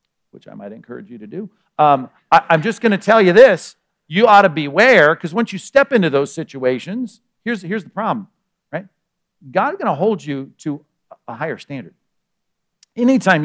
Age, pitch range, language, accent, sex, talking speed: 50-69, 150-200 Hz, English, American, male, 185 wpm